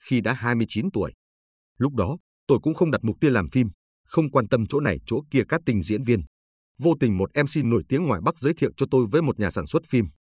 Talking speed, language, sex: 250 wpm, Vietnamese, male